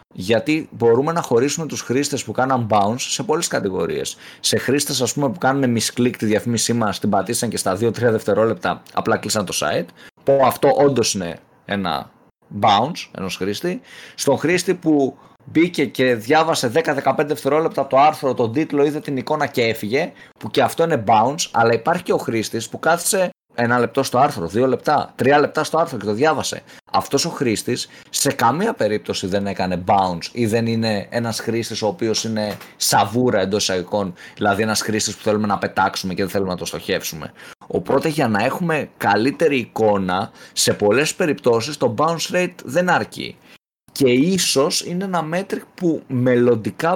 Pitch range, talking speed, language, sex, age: 110-150 Hz, 170 wpm, Greek, male, 20-39